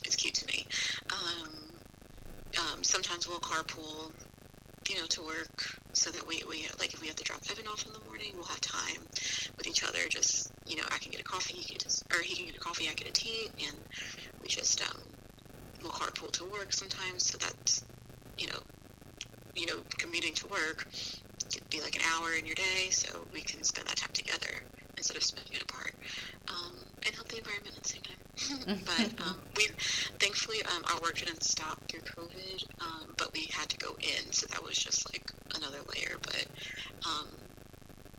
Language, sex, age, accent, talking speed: English, female, 30-49, American, 200 wpm